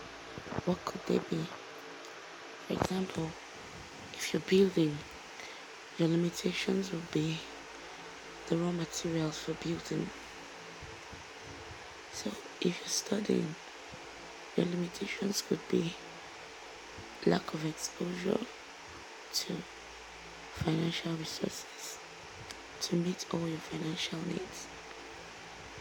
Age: 20-39